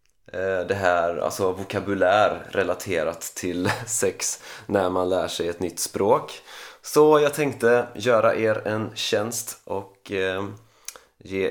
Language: Swedish